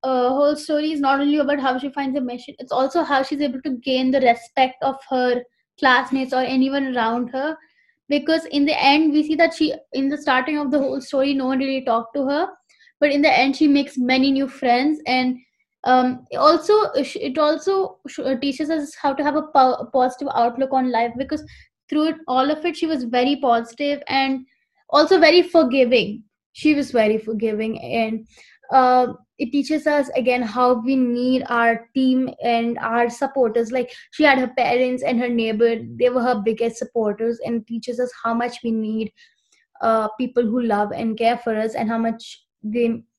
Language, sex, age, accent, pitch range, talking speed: English, female, 20-39, Indian, 240-290 Hz, 190 wpm